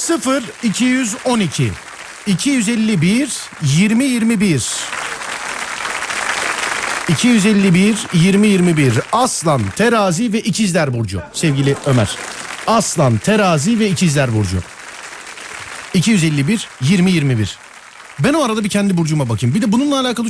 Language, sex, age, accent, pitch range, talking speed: Turkish, male, 50-69, native, 125-195 Hz, 90 wpm